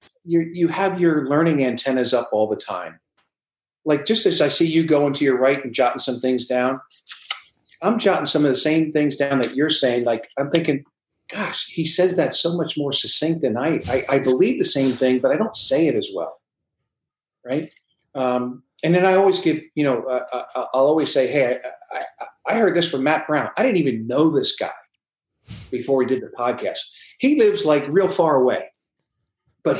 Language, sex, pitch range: English, male, 125-165 Hz